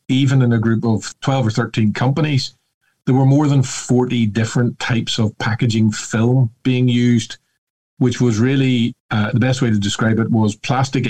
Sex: male